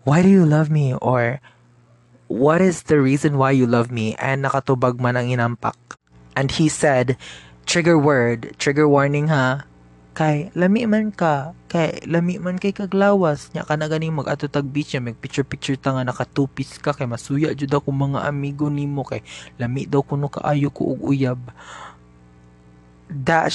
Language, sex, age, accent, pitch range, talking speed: English, male, 20-39, Filipino, 120-150 Hz, 160 wpm